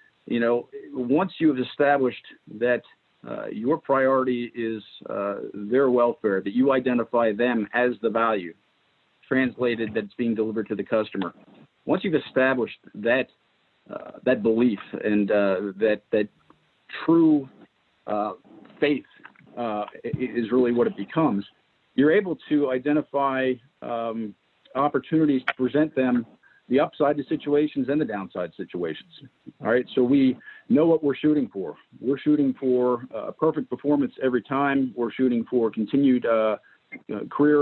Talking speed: 140 wpm